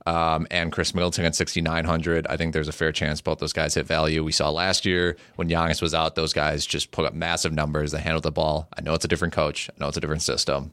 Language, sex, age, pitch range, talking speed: English, male, 30-49, 80-90 Hz, 270 wpm